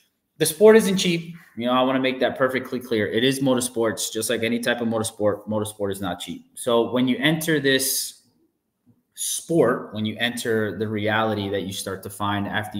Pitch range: 100-125 Hz